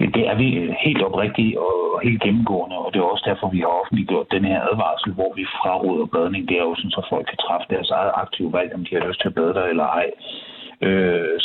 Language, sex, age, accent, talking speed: Danish, male, 60-79, native, 235 wpm